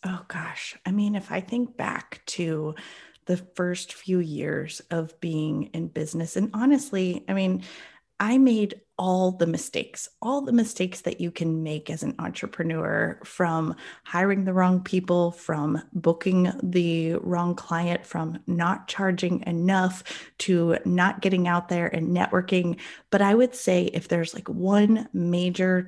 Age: 30-49